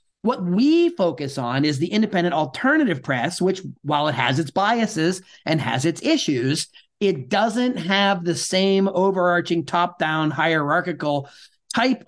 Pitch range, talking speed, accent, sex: 165-210 Hz, 140 wpm, American, male